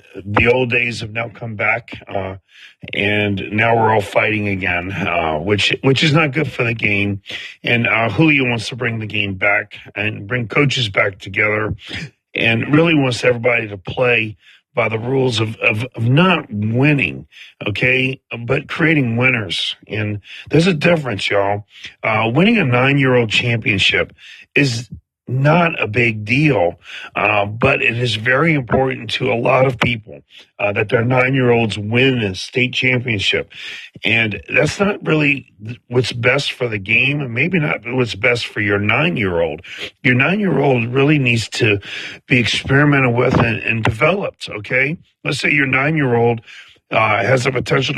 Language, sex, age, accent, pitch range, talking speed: English, male, 40-59, American, 105-135 Hz, 160 wpm